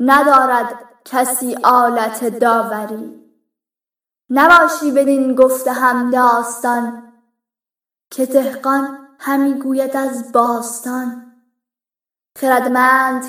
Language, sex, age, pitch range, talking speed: Persian, female, 10-29, 235-275 Hz, 70 wpm